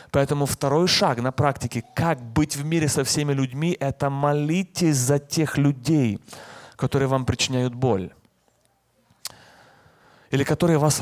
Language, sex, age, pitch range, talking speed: Russian, male, 30-49, 130-160 Hz, 130 wpm